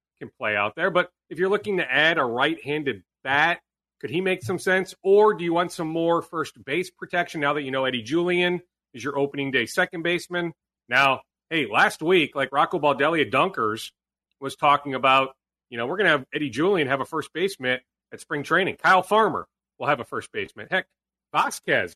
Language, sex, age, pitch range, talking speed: English, male, 40-59, 130-180 Hz, 200 wpm